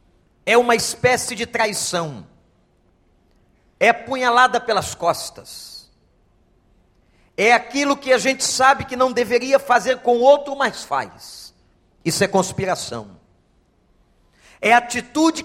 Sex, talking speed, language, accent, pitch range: male, 115 wpm, Portuguese, Brazilian, 180-255 Hz